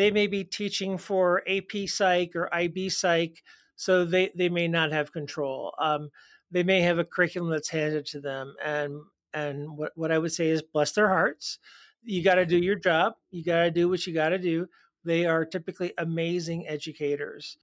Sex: male